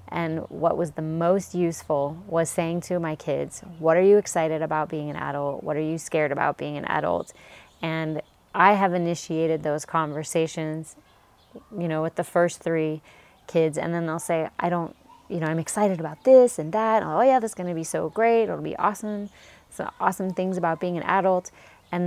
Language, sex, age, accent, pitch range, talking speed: English, female, 20-39, American, 155-175 Hz, 200 wpm